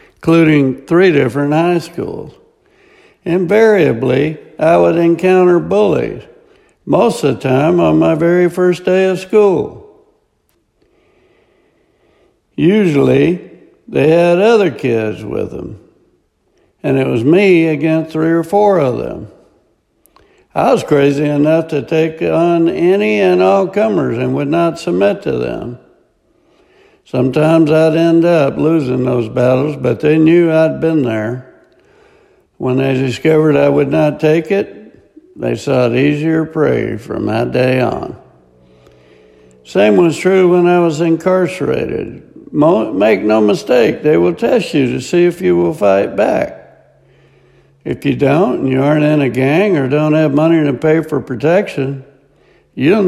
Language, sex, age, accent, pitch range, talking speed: English, male, 60-79, American, 140-190 Hz, 140 wpm